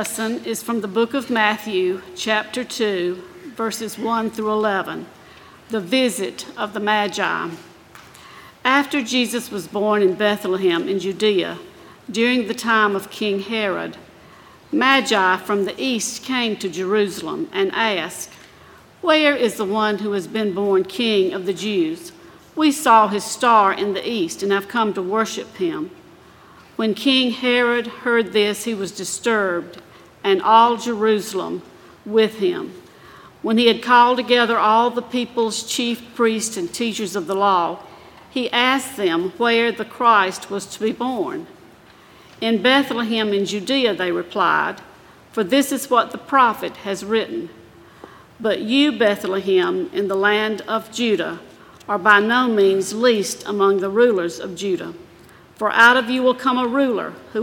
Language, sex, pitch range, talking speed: English, female, 200-245 Hz, 150 wpm